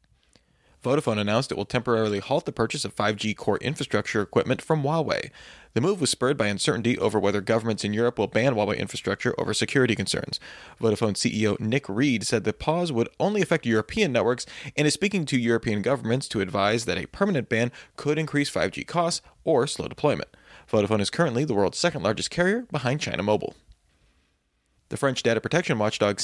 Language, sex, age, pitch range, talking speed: English, male, 30-49, 110-150 Hz, 185 wpm